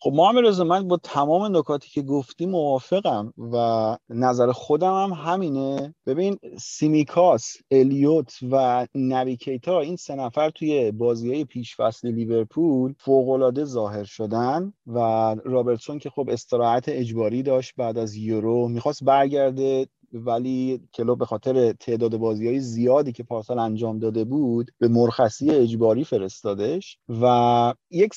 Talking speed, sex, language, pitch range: 130 wpm, male, Persian, 115-150 Hz